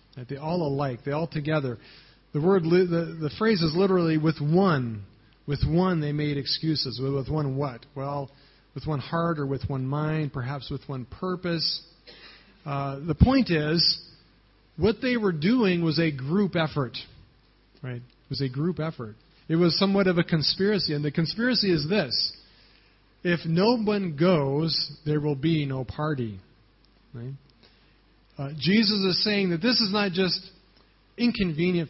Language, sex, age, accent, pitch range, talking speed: English, male, 40-59, American, 140-180 Hz, 160 wpm